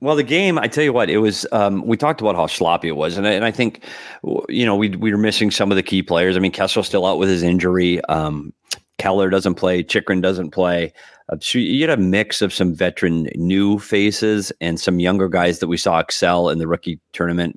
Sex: male